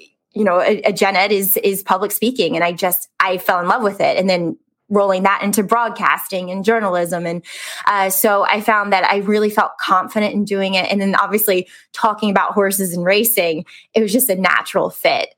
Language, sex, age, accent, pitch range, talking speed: English, female, 20-39, American, 190-220 Hz, 210 wpm